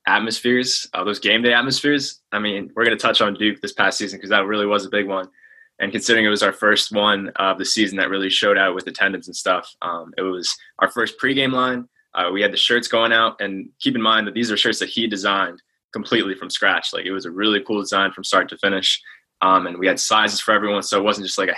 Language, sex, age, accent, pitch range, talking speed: English, male, 20-39, American, 100-110 Hz, 260 wpm